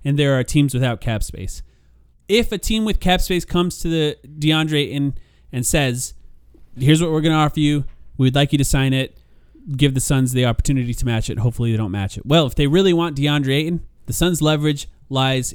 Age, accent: 30-49, American